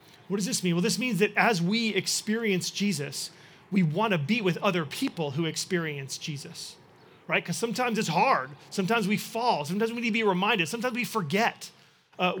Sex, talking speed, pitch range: male, 195 wpm, 165-205 Hz